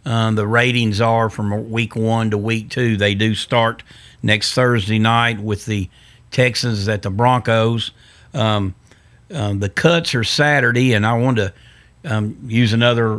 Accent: American